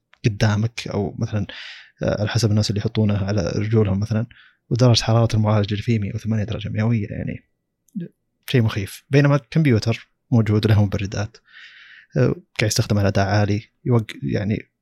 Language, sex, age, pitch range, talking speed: Arabic, male, 20-39, 105-120 Hz, 135 wpm